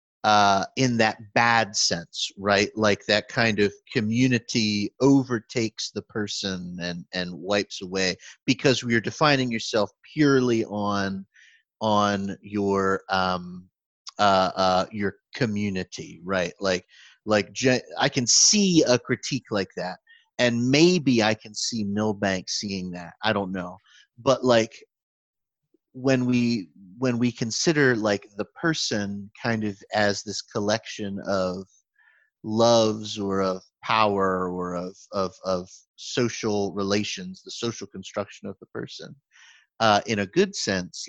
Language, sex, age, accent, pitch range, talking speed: English, male, 30-49, American, 100-120 Hz, 130 wpm